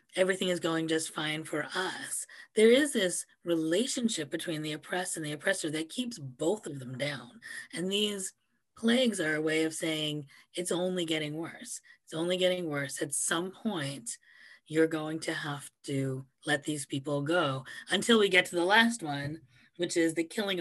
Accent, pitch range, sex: American, 145-180 Hz, female